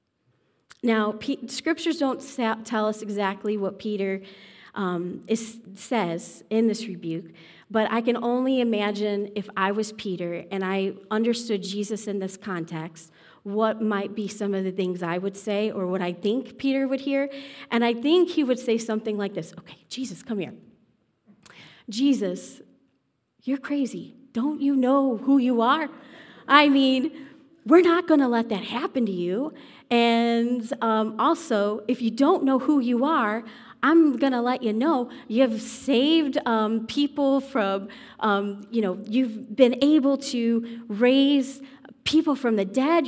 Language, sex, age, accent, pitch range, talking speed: English, female, 30-49, American, 210-270 Hz, 160 wpm